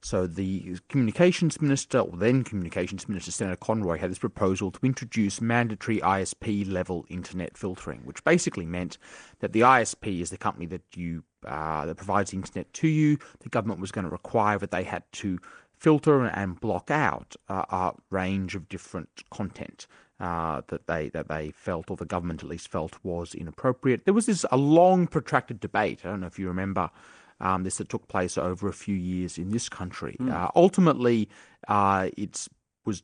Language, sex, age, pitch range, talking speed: English, male, 30-49, 90-115 Hz, 185 wpm